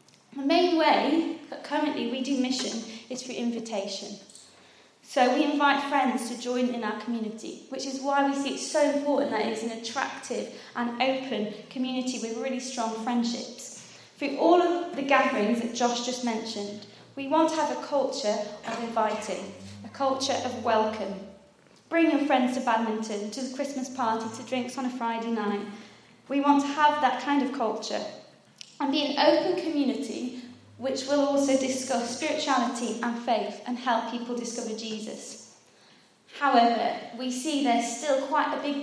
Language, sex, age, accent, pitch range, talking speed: English, female, 20-39, British, 225-275 Hz, 165 wpm